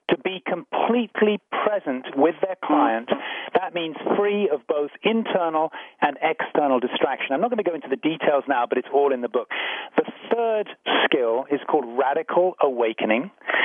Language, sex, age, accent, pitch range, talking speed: English, male, 40-59, British, 140-195 Hz, 165 wpm